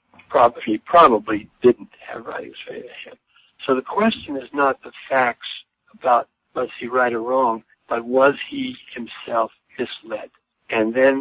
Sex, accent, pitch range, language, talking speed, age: male, American, 115-135 Hz, English, 155 wpm, 60-79